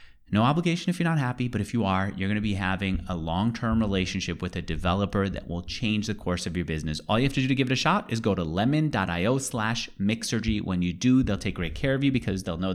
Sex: male